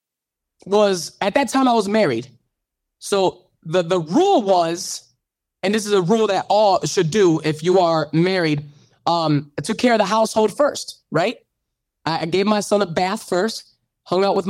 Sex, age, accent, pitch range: male, 20-39, American, 160-225 Hz